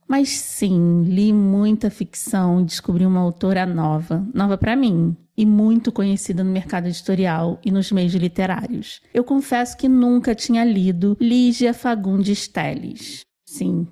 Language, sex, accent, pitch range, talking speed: Portuguese, female, Brazilian, 180-225 Hz, 140 wpm